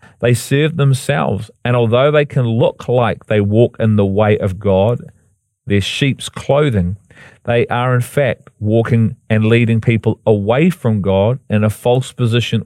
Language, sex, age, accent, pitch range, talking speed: English, male, 40-59, Australian, 110-130 Hz, 160 wpm